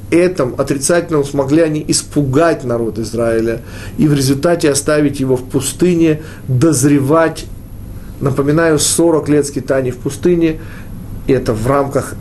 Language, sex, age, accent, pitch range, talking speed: Russian, male, 40-59, native, 110-155 Hz, 125 wpm